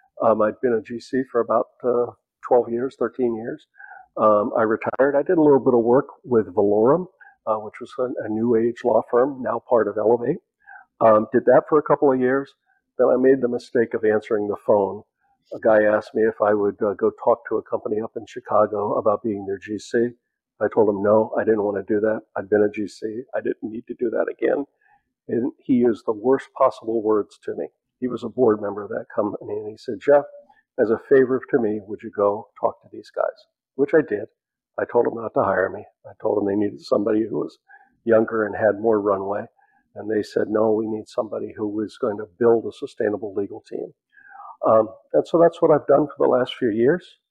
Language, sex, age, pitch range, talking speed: English, male, 50-69, 110-145 Hz, 225 wpm